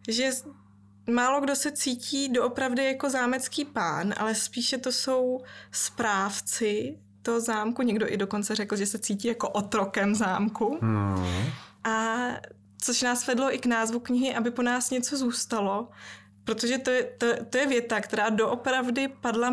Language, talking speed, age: Czech, 145 wpm, 20-39